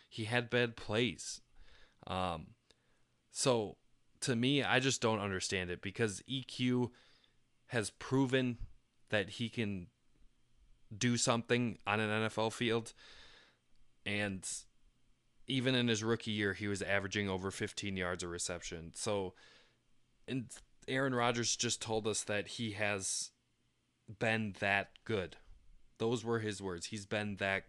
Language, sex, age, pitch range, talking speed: English, male, 20-39, 95-115 Hz, 130 wpm